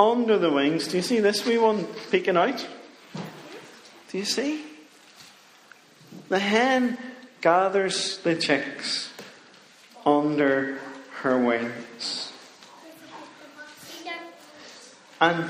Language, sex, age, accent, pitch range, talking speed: English, male, 40-59, British, 140-220 Hz, 90 wpm